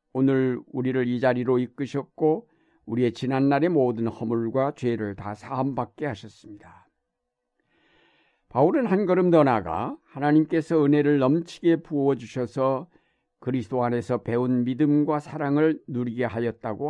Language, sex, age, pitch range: Korean, male, 50-69, 120-150 Hz